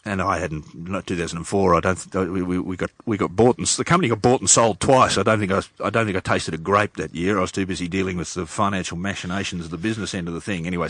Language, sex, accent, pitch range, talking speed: English, male, Australian, 95-145 Hz, 295 wpm